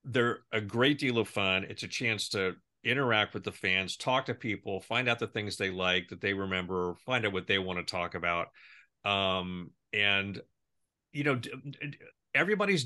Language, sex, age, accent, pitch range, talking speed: English, male, 40-59, American, 100-135 Hz, 180 wpm